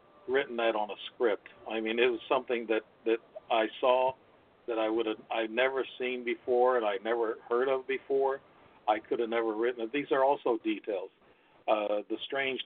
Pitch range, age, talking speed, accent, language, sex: 115-135 Hz, 50-69, 190 wpm, American, English, male